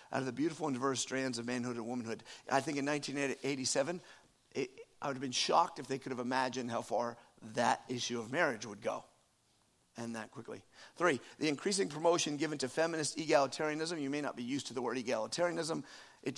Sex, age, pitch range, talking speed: male, 50-69, 125-160 Hz, 200 wpm